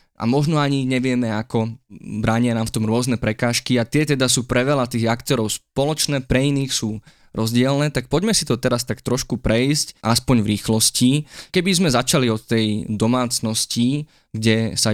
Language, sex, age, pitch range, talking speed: Slovak, male, 20-39, 110-140 Hz, 175 wpm